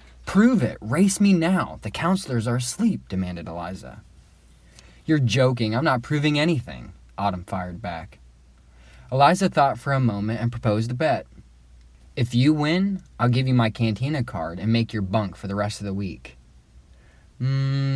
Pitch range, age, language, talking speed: 85-125 Hz, 20-39, English, 165 wpm